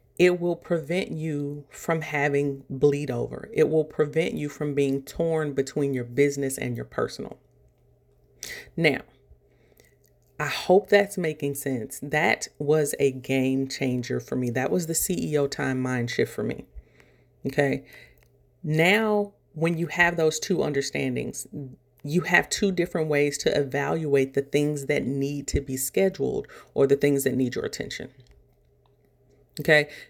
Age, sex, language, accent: 40-59, female, English, American